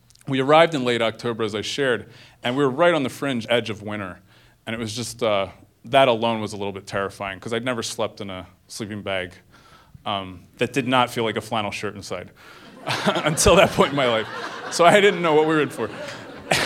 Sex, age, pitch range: male, 30-49, 105-140 Hz